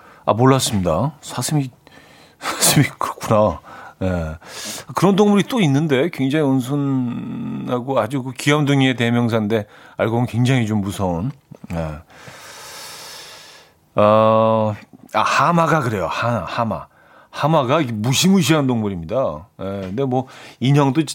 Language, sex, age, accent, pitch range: Korean, male, 40-59, native, 110-145 Hz